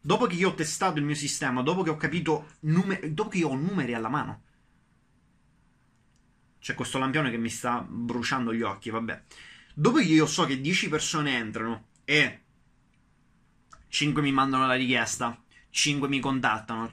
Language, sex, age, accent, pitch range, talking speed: Italian, male, 20-39, native, 130-180 Hz, 165 wpm